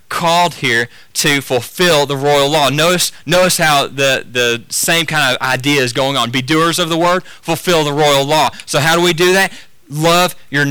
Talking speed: 200 wpm